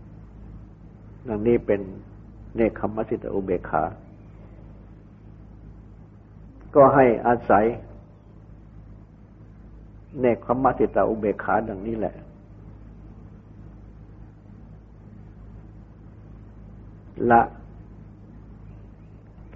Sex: male